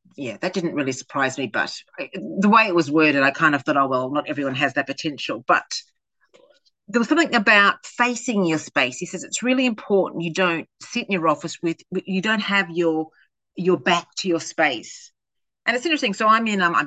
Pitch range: 160-220 Hz